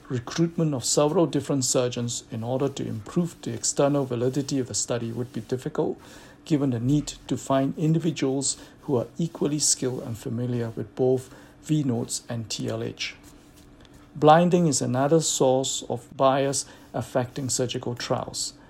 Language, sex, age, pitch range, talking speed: English, male, 60-79, 125-145 Hz, 140 wpm